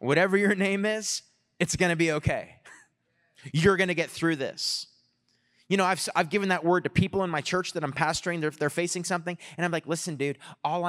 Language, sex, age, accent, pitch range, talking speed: English, male, 30-49, American, 145-180 Hz, 220 wpm